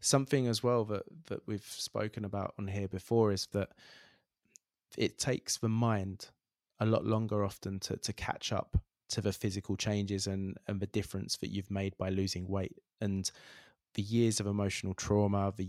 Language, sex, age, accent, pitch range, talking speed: English, male, 20-39, British, 95-110 Hz, 175 wpm